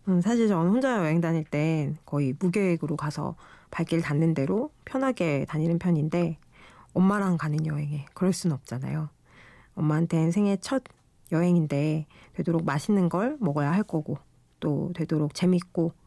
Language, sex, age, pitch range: Korean, female, 40-59, 155-195 Hz